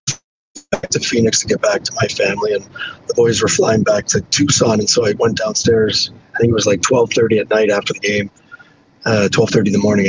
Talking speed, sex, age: 230 wpm, male, 40-59